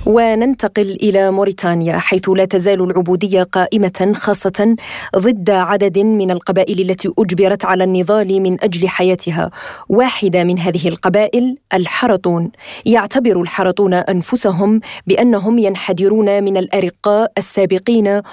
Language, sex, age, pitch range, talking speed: Arabic, female, 20-39, 190-225 Hz, 110 wpm